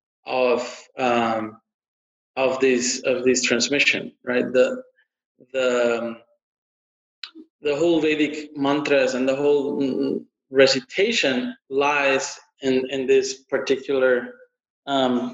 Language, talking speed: English, 95 wpm